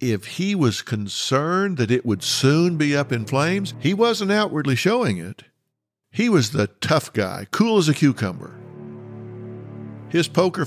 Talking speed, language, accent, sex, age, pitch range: 155 wpm, English, American, male, 50-69, 110-150 Hz